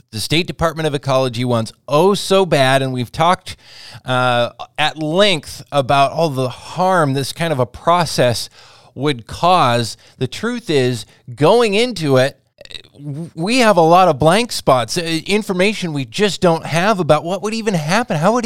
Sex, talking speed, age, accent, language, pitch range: male, 170 wpm, 20-39, American, English, 130-180 Hz